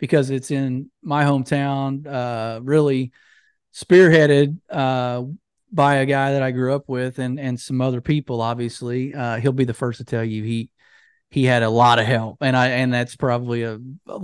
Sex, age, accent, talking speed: male, 30-49, American, 190 wpm